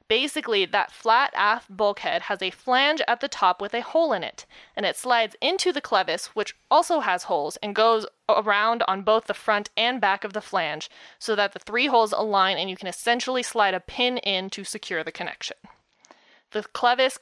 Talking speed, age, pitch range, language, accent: 200 wpm, 20-39, 195-245 Hz, English, American